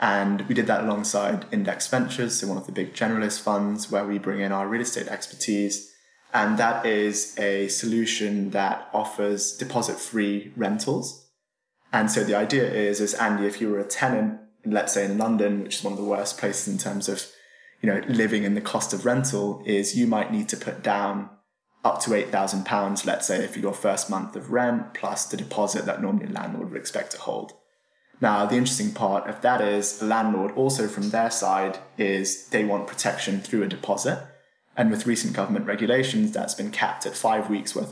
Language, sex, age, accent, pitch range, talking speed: English, male, 20-39, British, 100-120 Hz, 200 wpm